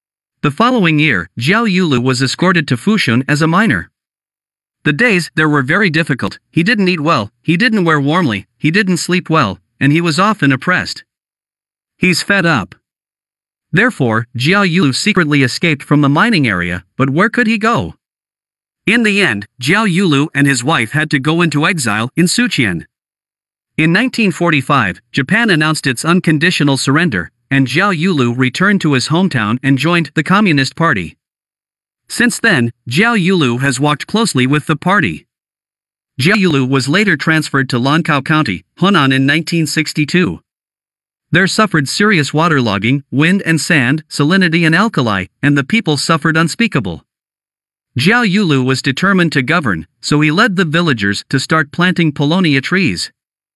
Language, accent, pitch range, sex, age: Chinese, American, 135-180 Hz, male, 50-69